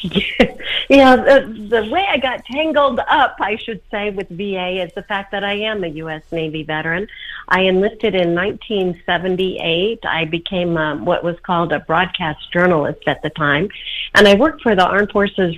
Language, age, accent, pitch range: English, 40-59, American, 175-215 Hz